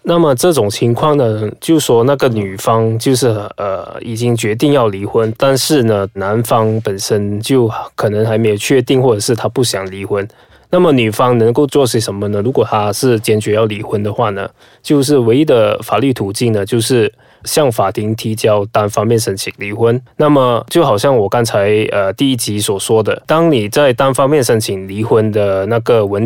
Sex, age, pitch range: male, 20-39, 105-135 Hz